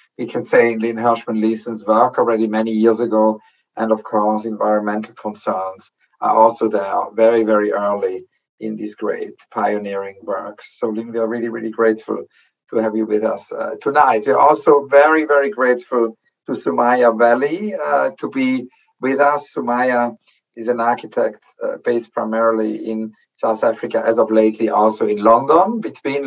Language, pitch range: English, 110-125 Hz